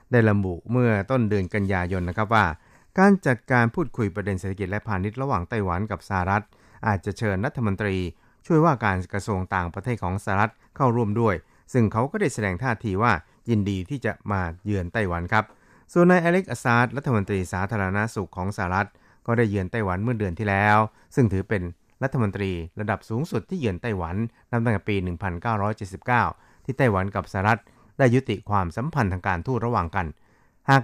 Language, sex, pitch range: Thai, male, 95-120 Hz